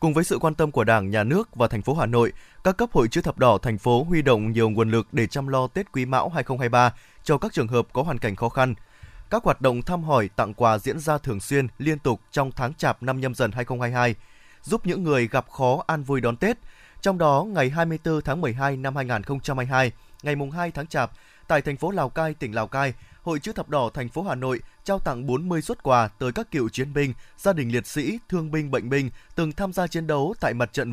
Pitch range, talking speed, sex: 125-160 Hz, 245 wpm, male